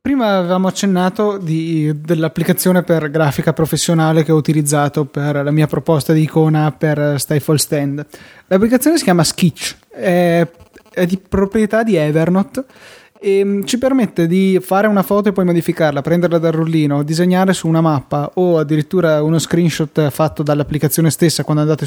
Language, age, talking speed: Italian, 20-39, 150 wpm